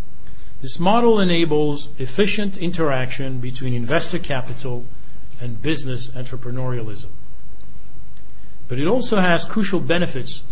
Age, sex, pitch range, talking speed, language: 50-69, male, 125-160 Hz, 95 wpm, English